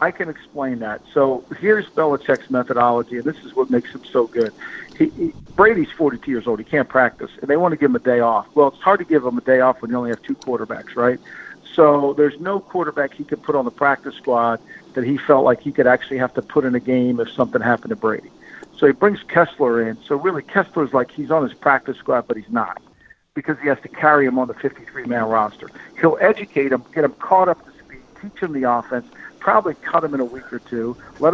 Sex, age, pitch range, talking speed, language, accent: male, 50-69, 125-155 Hz, 240 wpm, English, American